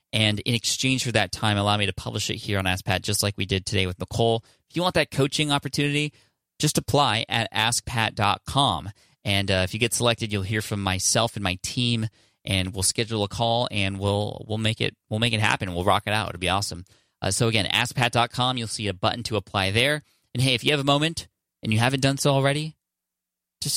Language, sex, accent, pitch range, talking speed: English, male, American, 100-130 Hz, 230 wpm